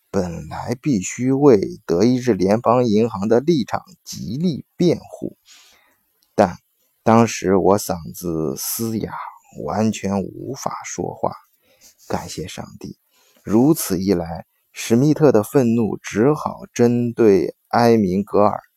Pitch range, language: 100-125 Hz, Chinese